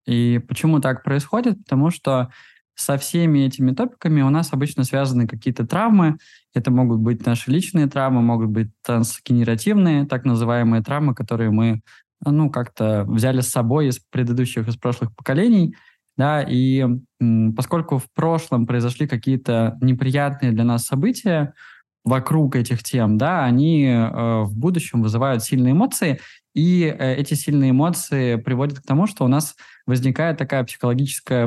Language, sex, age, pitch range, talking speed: Russian, male, 20-39, 120-145 Hz, 145 wpm